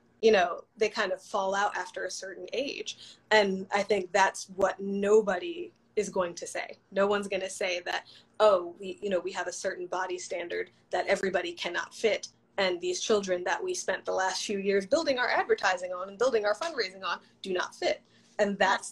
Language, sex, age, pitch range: English, female, 20-39, 185-215 Hz